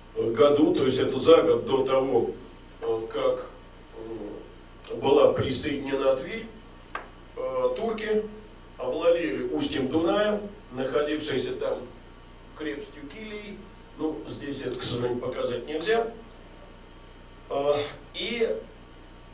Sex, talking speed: male, 85 wpm